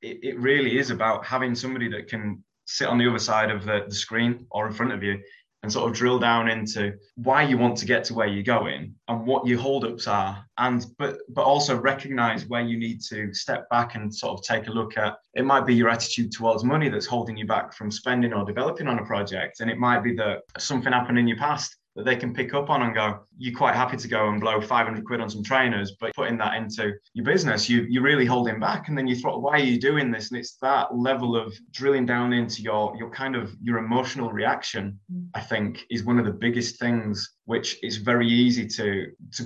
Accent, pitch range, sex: British, 110-125 Hz, male